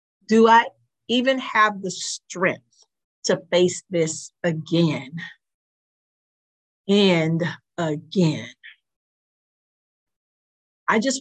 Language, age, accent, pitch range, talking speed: English, 50-69, American, 175-225 Hz, 75 wpm